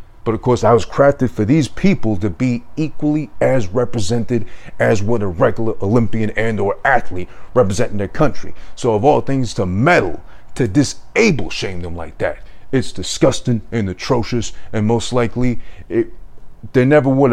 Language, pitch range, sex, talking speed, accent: English, 105-125 Hz, male, 165 wpm, American